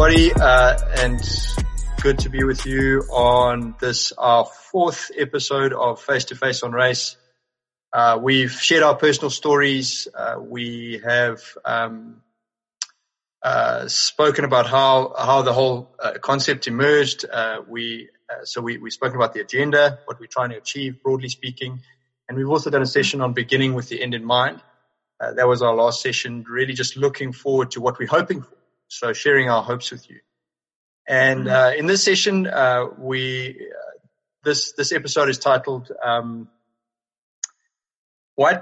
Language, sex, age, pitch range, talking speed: English, male, 20-39, 120-140 Hz, 165 wpm